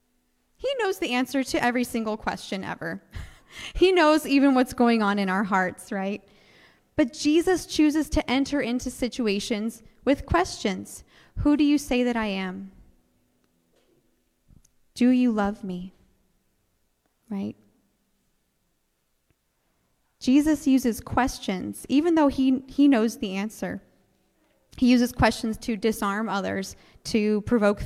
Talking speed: 125 wpm